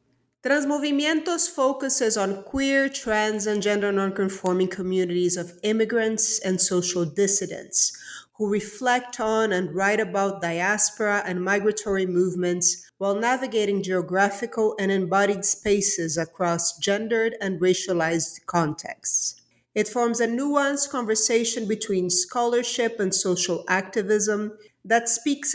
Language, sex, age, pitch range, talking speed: English, female, 40-59, 185-230 Hz, 110 wpm